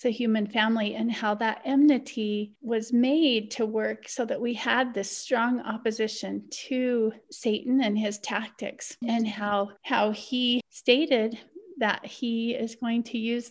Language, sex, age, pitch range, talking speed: English, female, 40-59, 210-245 Hz, 150 wpm